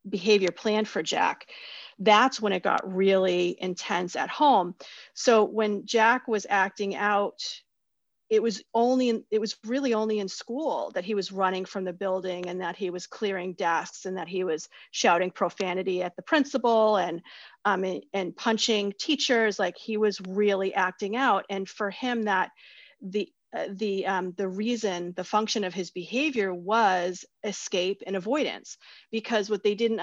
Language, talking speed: English, 170 wpm